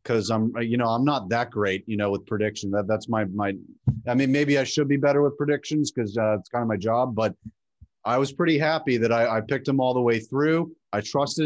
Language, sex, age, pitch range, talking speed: English, male, 30-49, 115-145 Hz, 250 wpm